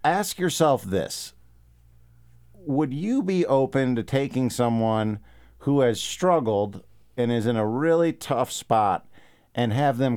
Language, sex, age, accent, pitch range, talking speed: English, male, 50-69, American, 100-130 Hz, 135 wpm